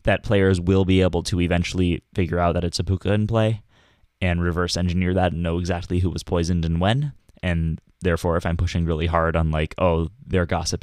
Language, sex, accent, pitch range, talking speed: English, male, American, 85-105 Hz, 215 wpm